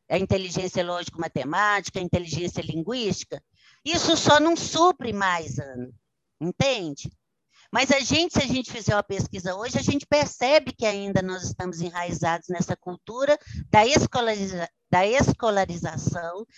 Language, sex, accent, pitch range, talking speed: Portuguese, female, Brazilian, 175-255 Hz, 130 wpm